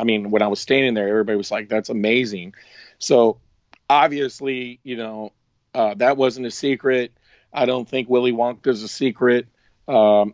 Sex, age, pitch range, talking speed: male, 50-69, 115-135 Hz, 175 wpm